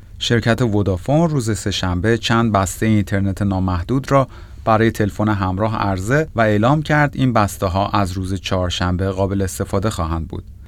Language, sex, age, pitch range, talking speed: Persian, male, 30-49, 95-115 Hz, 150 wpm